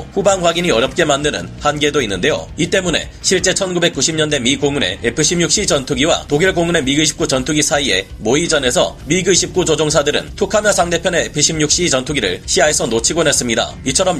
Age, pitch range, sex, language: 30-49, 145-175 Hz, male, Korean